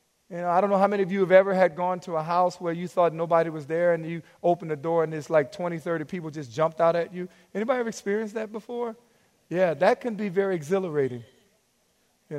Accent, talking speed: American, 240 wpm